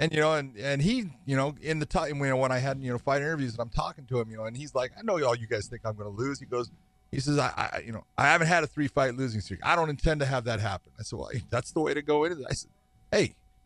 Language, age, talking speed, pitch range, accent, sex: English, 40-59, 340 wpm, 105-145 Hz, American, male